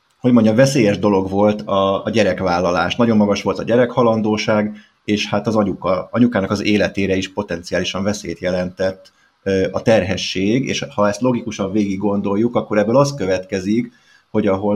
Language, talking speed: Hungarian, 160 wpm